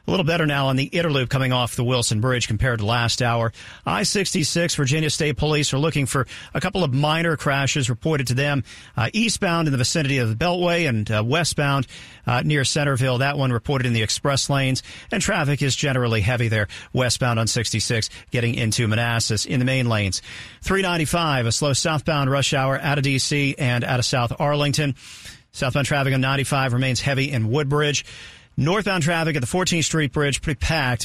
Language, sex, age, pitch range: English, male, 50-69, 120-150 Hz